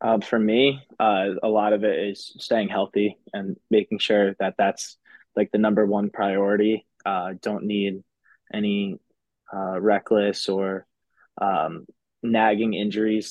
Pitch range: 100-110 Hz